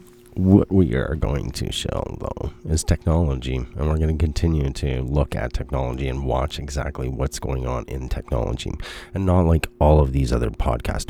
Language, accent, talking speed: English, American, 185 wpm